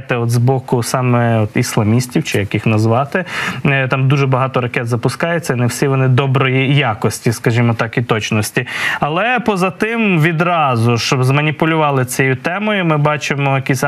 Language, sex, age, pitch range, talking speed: Ukrainian, male, 20-39, 130-155 Hz, 150 wpm